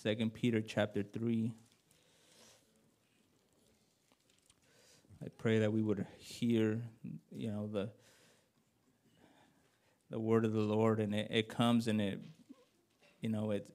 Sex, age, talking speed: male, 20-39, 120 wpm